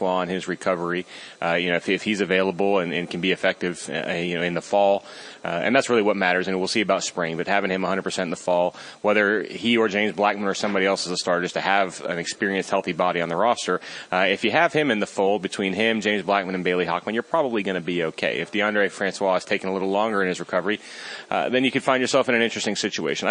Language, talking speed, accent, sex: English, 265 wpm, American, male